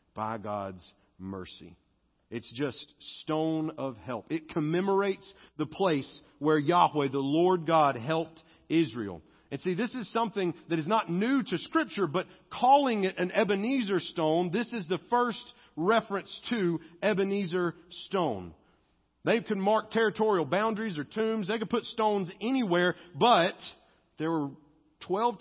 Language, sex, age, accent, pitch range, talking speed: English, male, 40-59, American, 145-200 Hz, 140 wpm